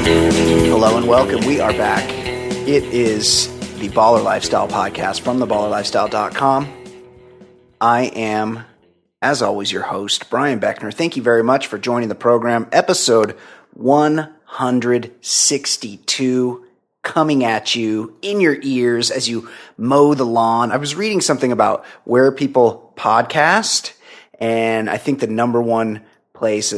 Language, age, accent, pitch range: English, 30-49, American, 105-125 Hz